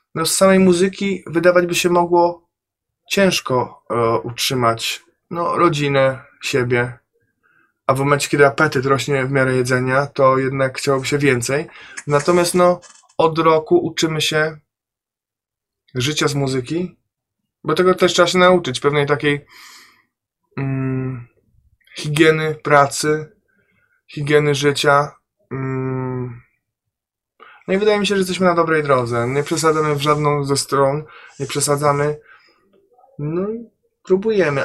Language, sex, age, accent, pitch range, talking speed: Polish, male, 20-39, native, 135-175 Hz, 120 wpm